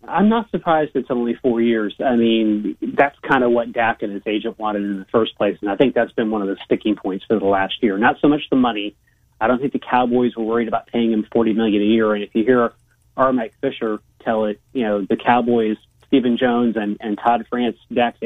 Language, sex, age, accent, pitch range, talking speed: English, male, 30-49, American, 105-125 Hz, 245 wpm